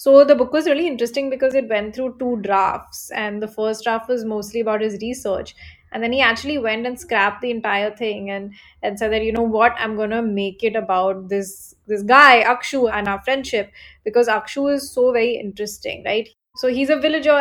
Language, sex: English, female